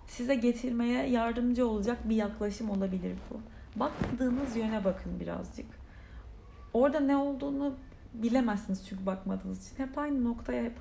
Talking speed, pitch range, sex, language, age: 130 wpm, 195-240 Hz, female, Turkish, 30-49